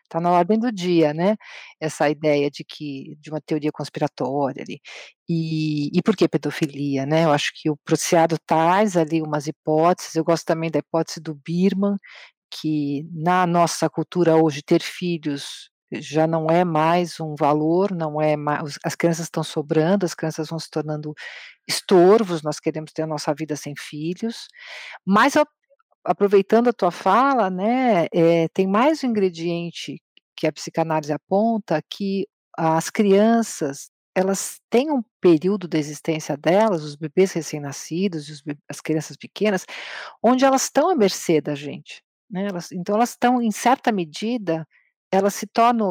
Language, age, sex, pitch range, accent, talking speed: Portuguese, 50-69, female, 155-200 Hz, Brazilian, 155 wpm